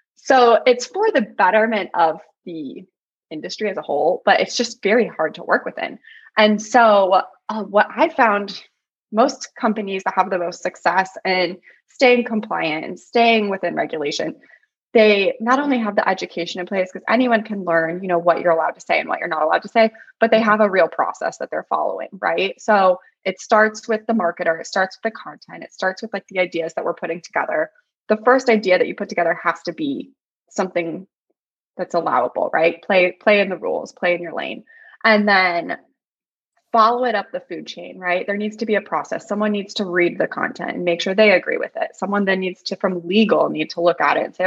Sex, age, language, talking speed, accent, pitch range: female, 20-39, English, 215 wpm, American, 180-230 Hz